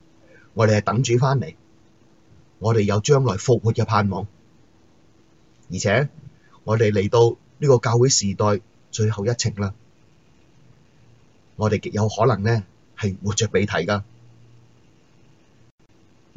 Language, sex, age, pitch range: Chinese, male, 30-49, 110-135 Hz